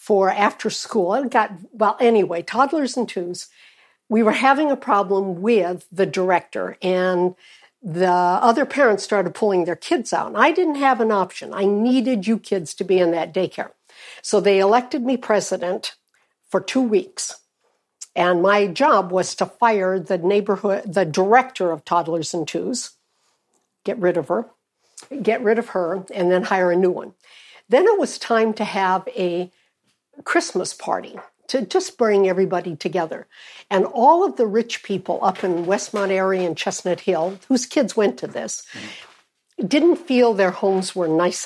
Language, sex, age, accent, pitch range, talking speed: English, female, 60-79, American, 180-230 Hz, 165 wpm